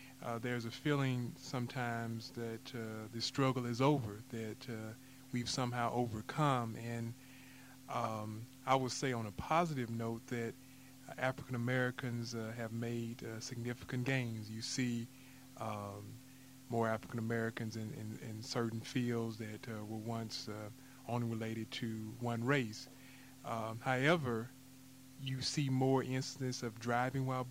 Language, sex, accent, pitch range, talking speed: English, male, American, 115-130 Hz, 135 wpm